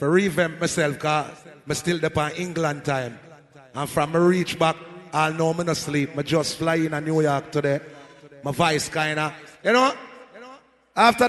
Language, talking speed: English, 175 wpm